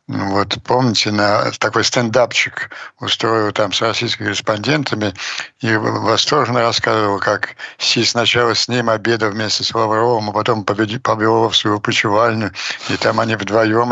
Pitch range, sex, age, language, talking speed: 110-140 Hz, male, 60-79, Ukrainian, 140 wpm